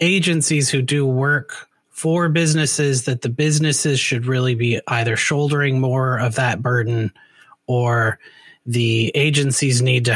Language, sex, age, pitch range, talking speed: English, male, 30-49, 120-150 Hz, 135 wpm